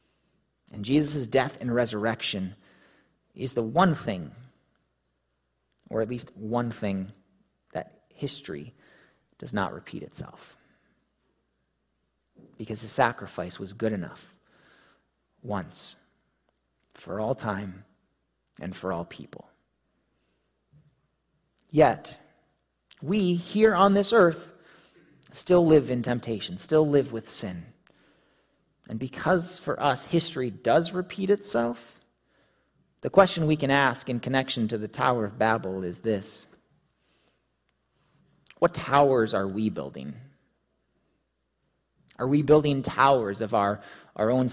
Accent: American